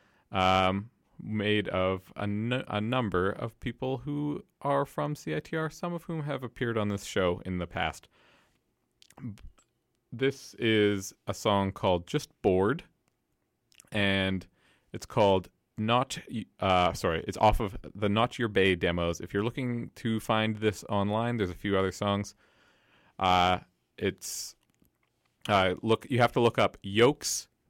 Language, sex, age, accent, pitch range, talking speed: English, male, 30-49, American, 90-115 Hz, 145 wpm